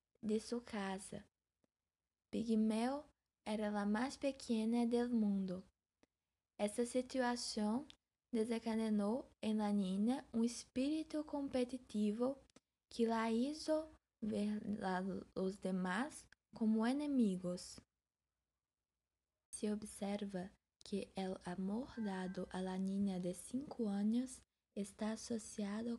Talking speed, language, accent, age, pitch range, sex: 100 wpm, Portuguese, Brazilian, 20-39, 195-240 Hz, female